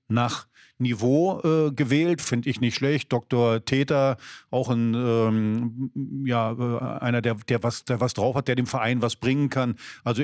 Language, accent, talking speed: German, German, 175 wpm